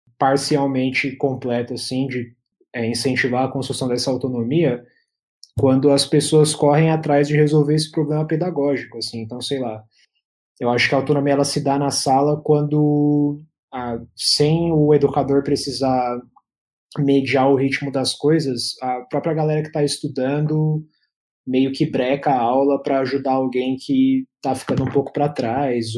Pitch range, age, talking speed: 125-145 Hz, 20-39, 150 wpm